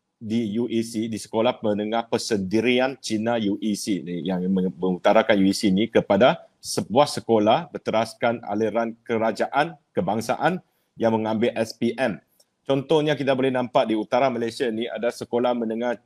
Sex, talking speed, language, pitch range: male, 125 wpm, Malay, 115-145 Hz